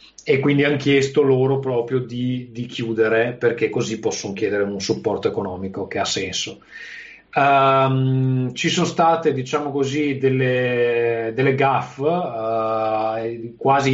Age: 30-49